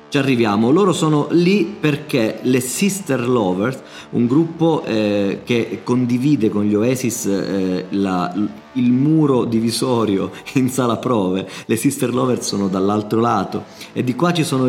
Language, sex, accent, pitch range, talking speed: Italian, male, native, 100-130 Hz, 140 wpm